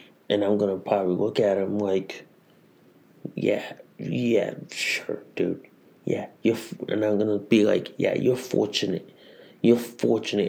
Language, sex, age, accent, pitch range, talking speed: English, male, 30-49, American, 100-115 Hz, 155 wpm